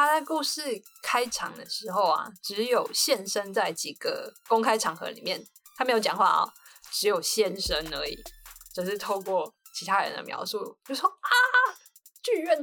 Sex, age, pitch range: female, 20-39, 205-310 Hz